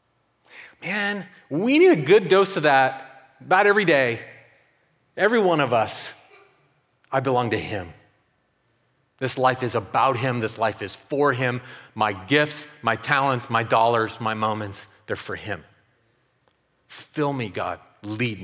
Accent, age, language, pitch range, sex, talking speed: American, 40-59, English, 100-140 Hz, male, 145 wpm